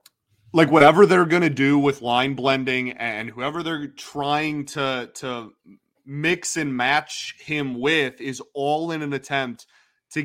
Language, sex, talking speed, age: English, male, 150 wpm, 20-39